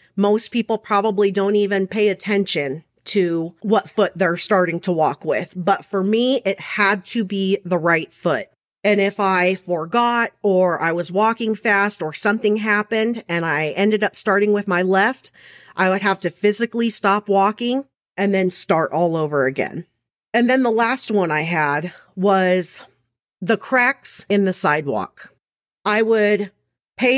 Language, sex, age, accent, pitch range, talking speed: English, female, 40-59, American, 180-220 Hz, 165 wpm